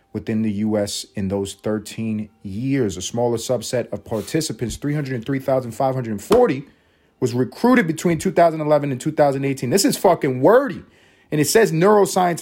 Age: 30-49